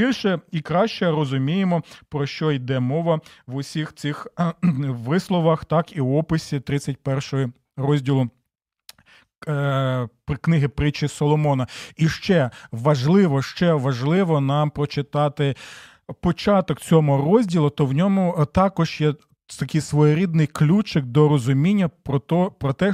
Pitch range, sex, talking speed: 145-185 Hz, male, 120 wpm